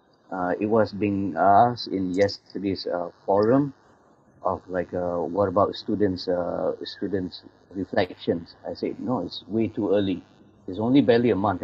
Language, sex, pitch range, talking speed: English, male, 95-110 Hz, 155 wpm